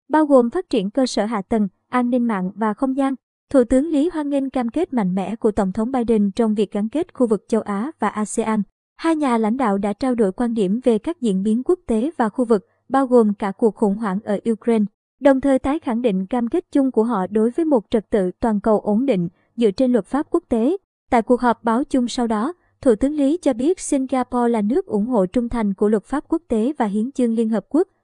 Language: Vietnamese